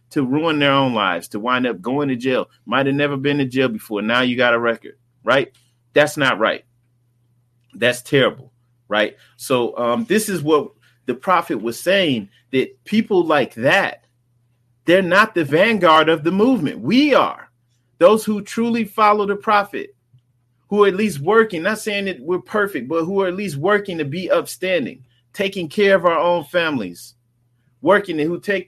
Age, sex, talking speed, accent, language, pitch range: 30-49, male, 180 wpm, American, English, 120-190 Hz